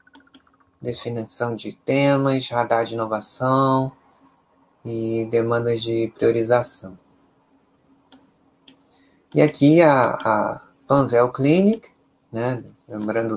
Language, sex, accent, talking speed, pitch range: Portuguese, male, Brazilian, 80 wpm, 110-135 Hz